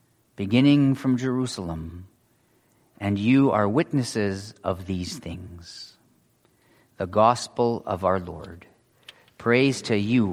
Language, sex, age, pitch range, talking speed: English, male, 40-59, 110-135 Hz, 105 wpm